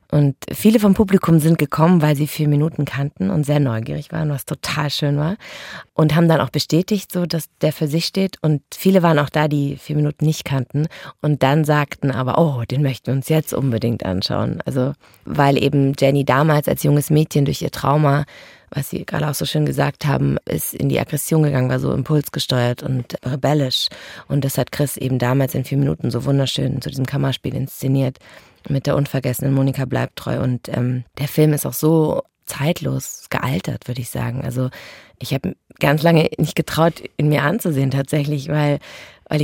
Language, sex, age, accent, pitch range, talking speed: German, female, 30-49, German, 135-160 Hz, 195 wpm